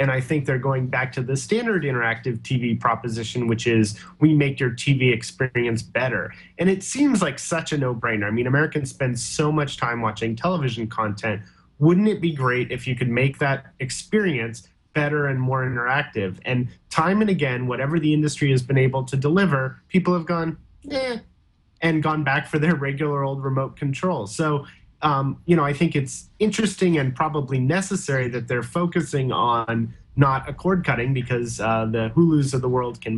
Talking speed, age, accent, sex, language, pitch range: 185 wpm, 30-49, American, male, English, 120-155 Hz